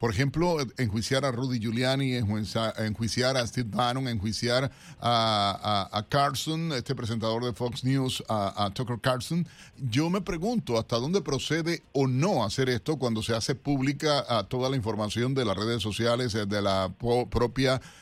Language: Spanish